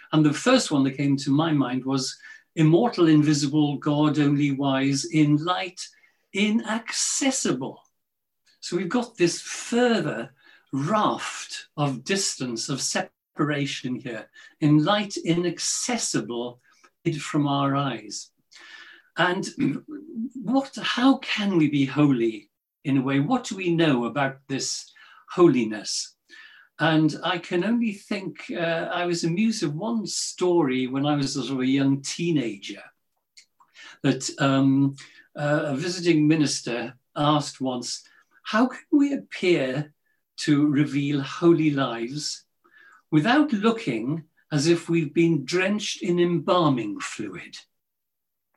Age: 50-69